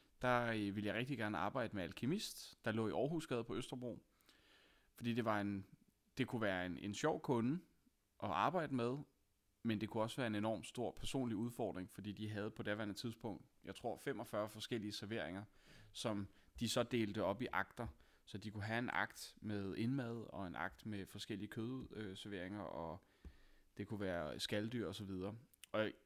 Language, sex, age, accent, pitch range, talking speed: Danish, male, 30-49, native, 100-120 Hz, 175 wpm